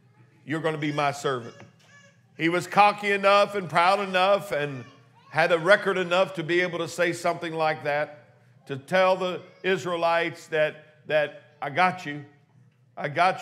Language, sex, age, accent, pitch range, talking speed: English, male, 50-69, American, 155-190 Hz, 165 wpm